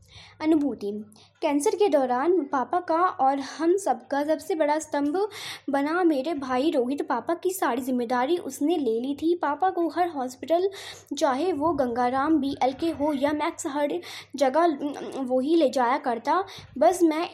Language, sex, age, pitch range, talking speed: Hindi, female, 20-39, 275-340 Hz, 155 wpm